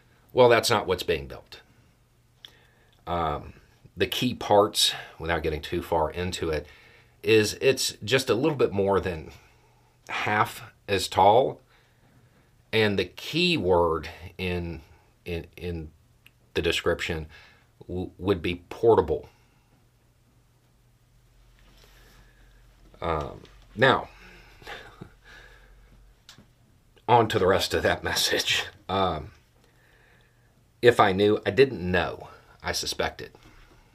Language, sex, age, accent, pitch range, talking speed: English, male, 40-59, American, 85-120 Hz, 105 wpm